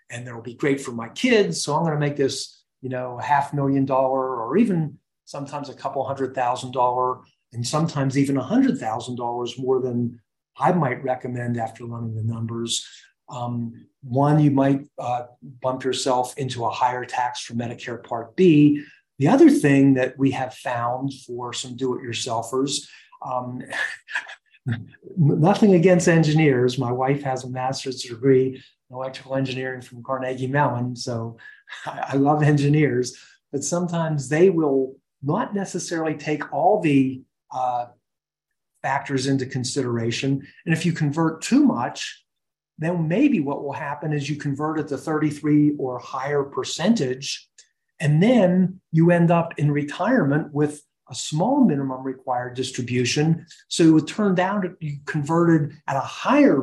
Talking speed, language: 155 wpm, English